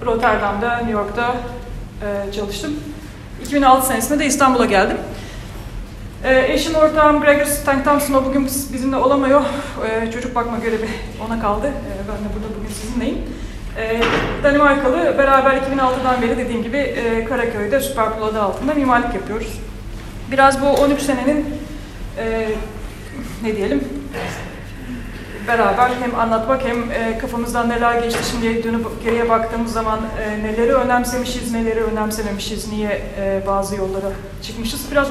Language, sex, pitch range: Turkish, female, 220-270 Hz